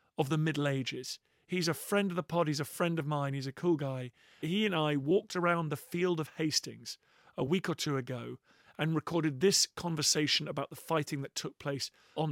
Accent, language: British, English